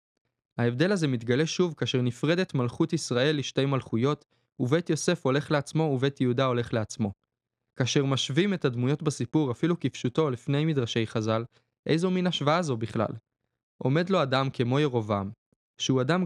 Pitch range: 125-160 Hz